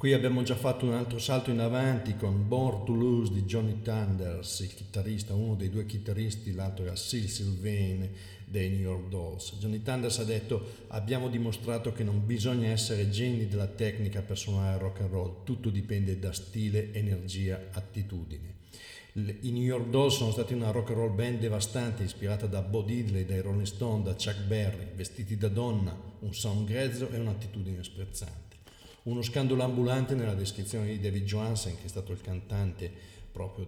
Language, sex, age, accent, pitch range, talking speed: Italian, male, 50-69, native, 95-115 Hz, 175 wpm